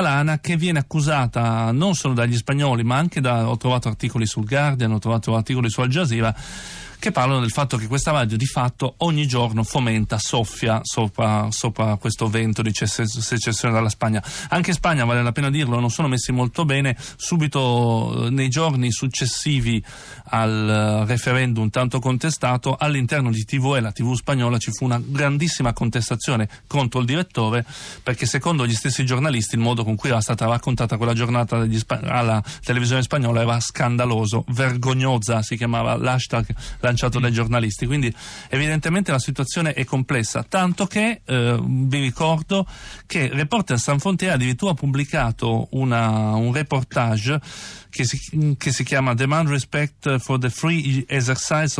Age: 40-59